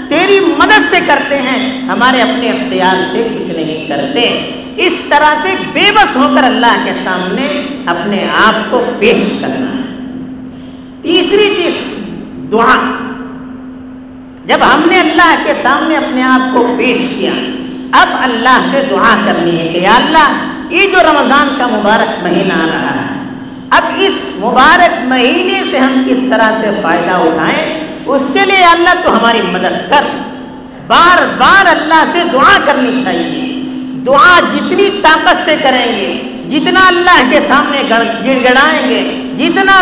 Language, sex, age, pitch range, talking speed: Urdu, female, 50-69, 255-330 Hz, 150 wpm